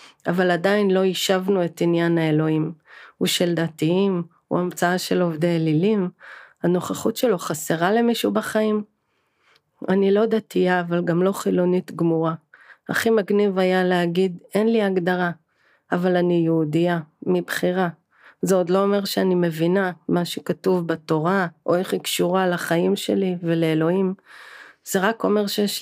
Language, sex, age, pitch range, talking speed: Hebrew, female, 40-59, 170-195 Hz, 130 wpm